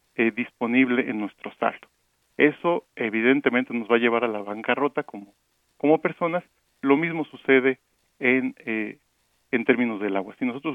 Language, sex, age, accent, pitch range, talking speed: Spanish, male, 50-69, Mexican, 115-150 Hz, 150 wpm